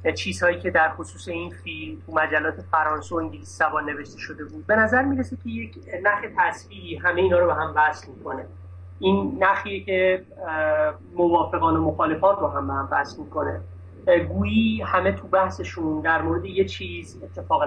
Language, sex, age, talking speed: Persian, male, 30-49, 165 wpm